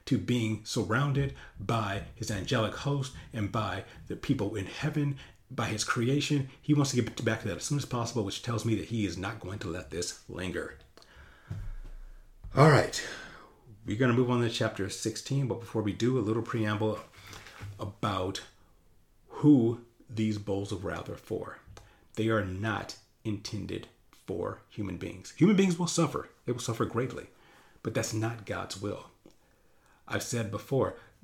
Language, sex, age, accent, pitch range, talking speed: English, male, 40-59, American, 100-120 Hz, 165 wpm